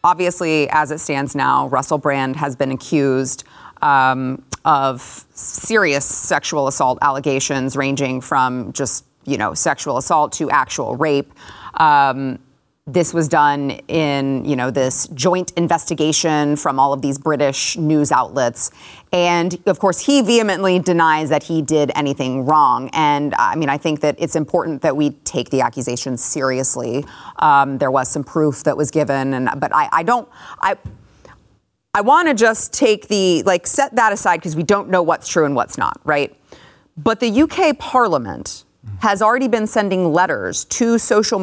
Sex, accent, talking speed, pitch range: female, American, 170 wpm, 145-210 Hz